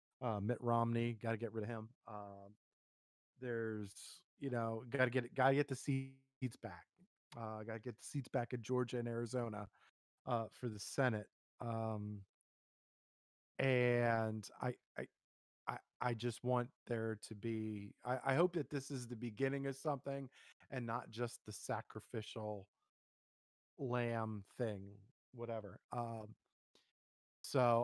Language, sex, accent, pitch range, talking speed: English, male, American, 110-140 Hz, 150 wpm